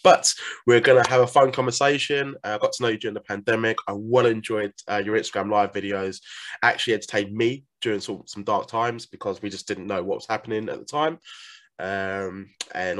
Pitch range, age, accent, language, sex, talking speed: 100-135 Hz, 20-39, British, English, male, 215 wpm